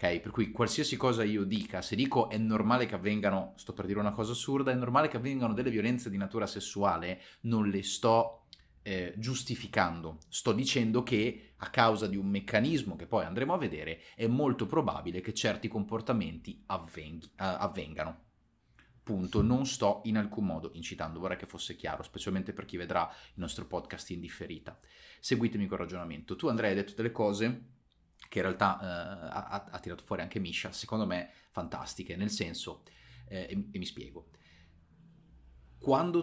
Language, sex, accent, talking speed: Italian, male, native, 175 wpm